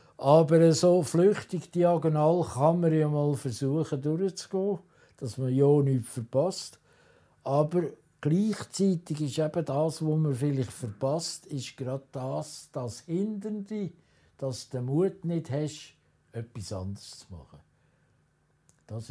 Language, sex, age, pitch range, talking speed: German, male, 60-79, 110-155 Hz, 130 wpm